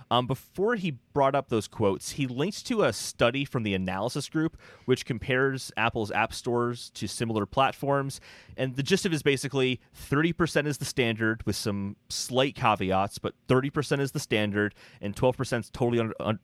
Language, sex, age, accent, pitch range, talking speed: English, male, 30-49, American, 105-140 Hz, 195 wpm